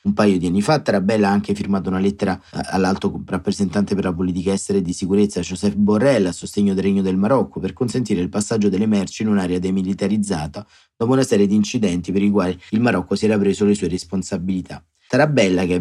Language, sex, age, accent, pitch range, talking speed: Italian, male, 30-49, native, 95-110 Hz, 215 wpm